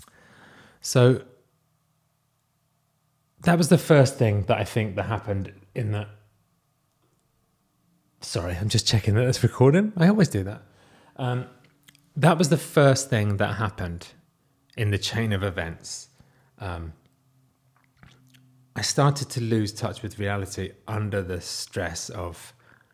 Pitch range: 100-130 Hz